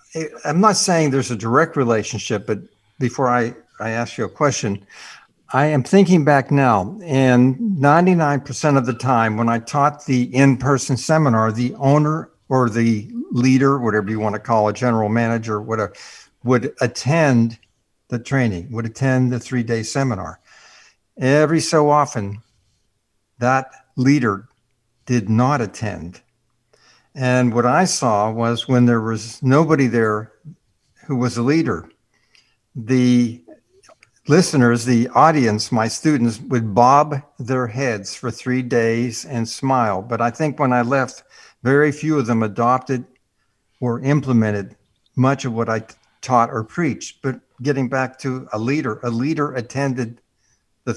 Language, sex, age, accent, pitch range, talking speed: English, male, 60-79, American, 115-135 Hz, 140 wpm